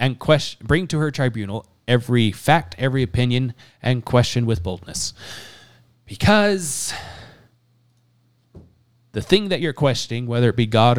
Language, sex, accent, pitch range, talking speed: English, male, American, 110-125 Hz, 130 wpm